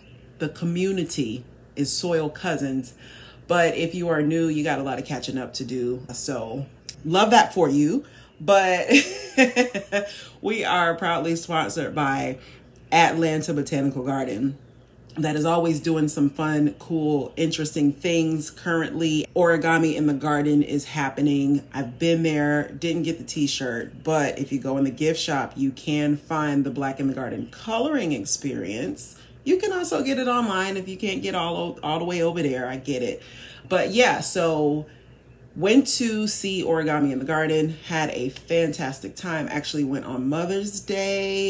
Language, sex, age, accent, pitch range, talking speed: English, female, 30-49, American, 140-170 Hz, 160 wpm